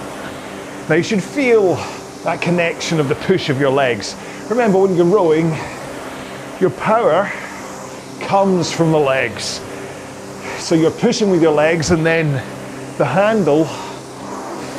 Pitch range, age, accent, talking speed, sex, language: 135-175 Hz, 30-49, British, 130 wpm, male, English